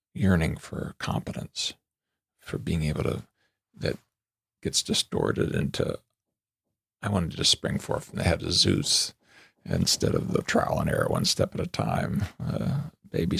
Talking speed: 155 wpm